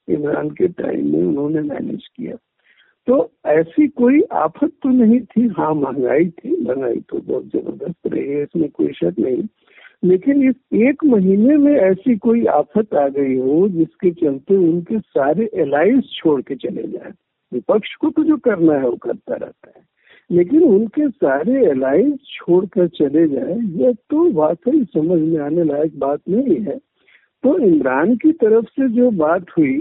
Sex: male